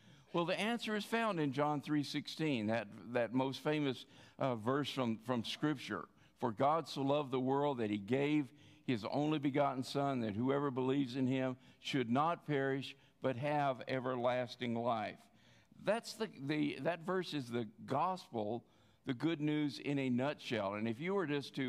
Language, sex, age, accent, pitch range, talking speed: English, male, 50-69, American, 125-155 Hz, 170 wpm